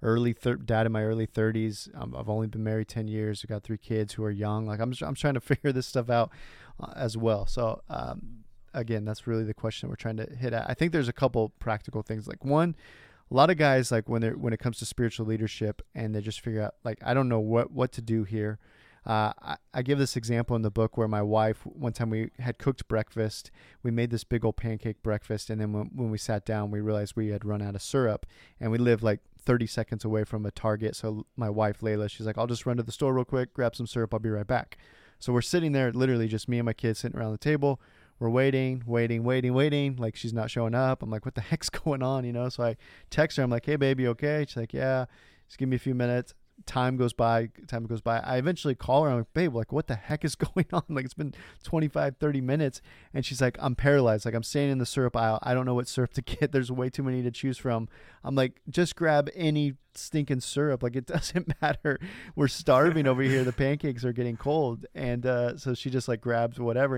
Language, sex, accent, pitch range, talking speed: English, male, American, 110-135 Hz, 255 wpm